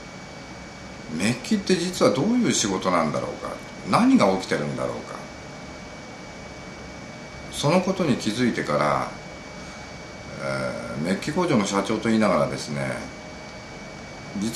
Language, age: Japanese, 50-69